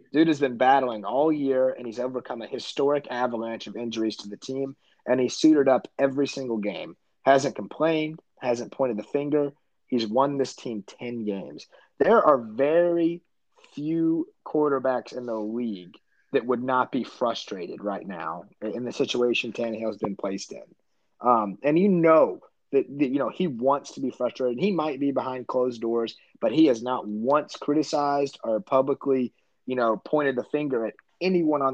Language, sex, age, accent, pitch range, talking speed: English, male, 30-49, American, 120-155 Hz, 180 wpm